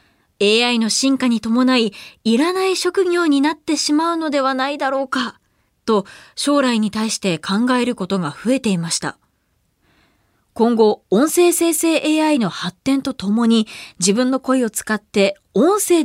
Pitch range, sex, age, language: 200-300 Hz, female, 20-39, Japanese